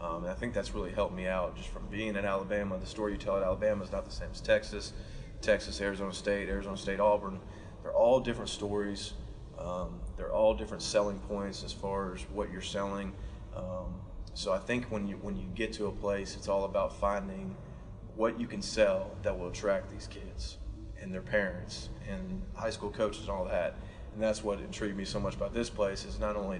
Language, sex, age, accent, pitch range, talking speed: English, male, 30-49, American, 100-110 Hz, 215 wpm